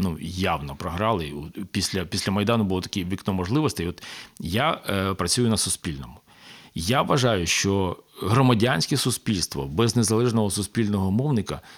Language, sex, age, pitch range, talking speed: Ukrainian, male, 40-59, 90-125 Hz, 120 wpm